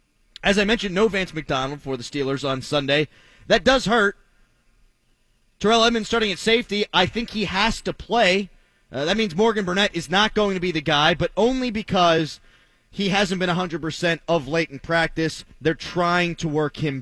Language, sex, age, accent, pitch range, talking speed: English, male, 30-49, American, 145-205 Hz, 185 wpm